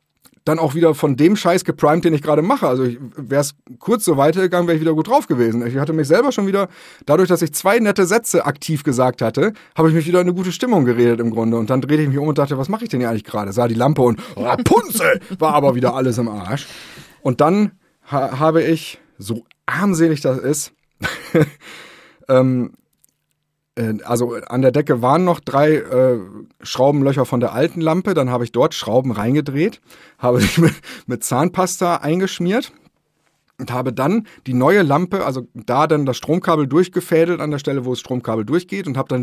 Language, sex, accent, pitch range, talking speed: German, male, German, 125-170 Hz, 200 wpm